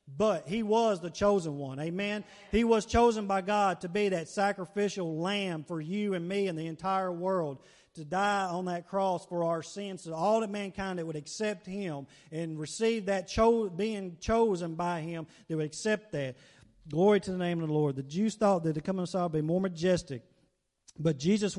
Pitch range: 160-200 Hz